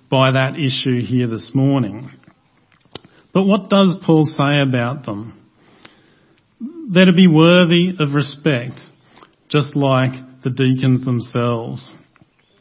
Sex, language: male, English